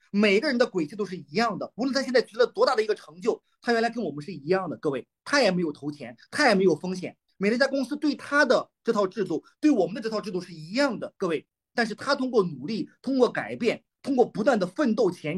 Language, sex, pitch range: Chinese, male, 180-255 Hz